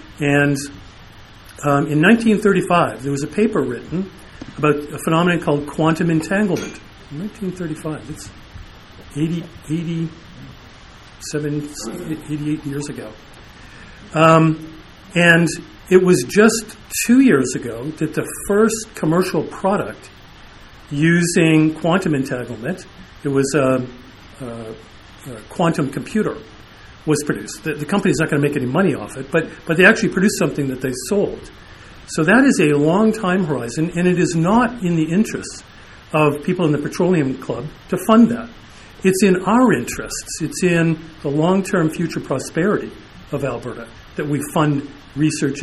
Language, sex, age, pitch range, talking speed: English, male, 50-69, 135-175 Hz, 140 wpm